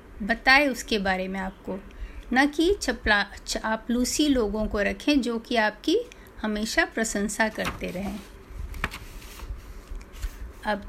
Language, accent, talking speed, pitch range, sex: Hindi, native, 110 wpm, 215-290 Hz, female